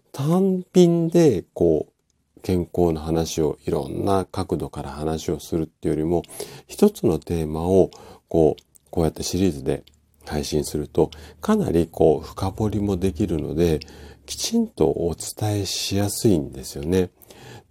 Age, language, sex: 40-59, Japanese, male